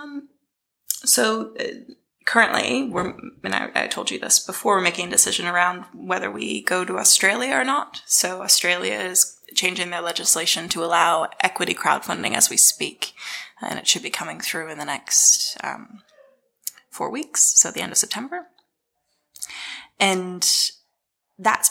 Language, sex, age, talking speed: English, female, 20-39, 155 wpm